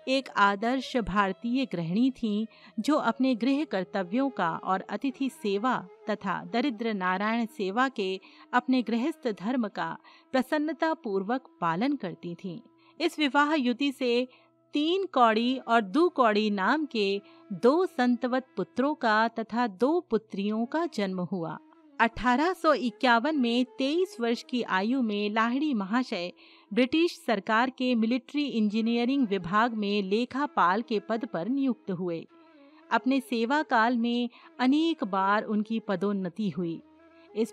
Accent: native